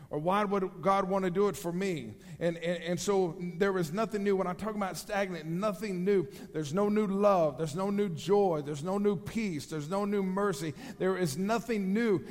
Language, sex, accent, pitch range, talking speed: English, male, American, 175-215 Hz, 220 wpm